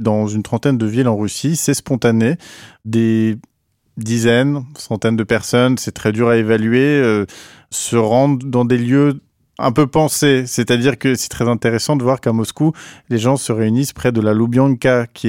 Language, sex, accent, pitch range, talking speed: French, male, French, 105-125 Hz, 180 wpm